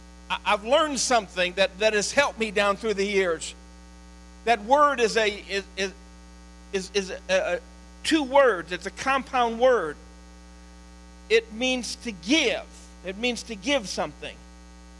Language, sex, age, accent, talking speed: English, male, 50-69, American, 145 wpm